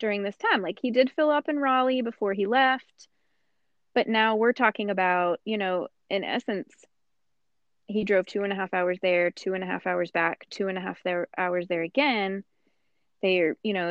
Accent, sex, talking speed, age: American, female, 200 wpm, 20-39